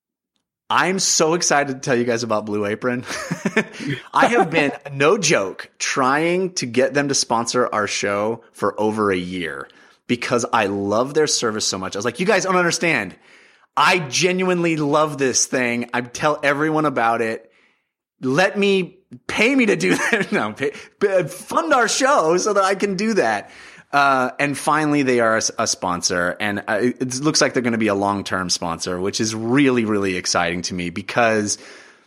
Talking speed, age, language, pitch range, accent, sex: 185 wpm, 30-49, English, 105-155 Hz, American, male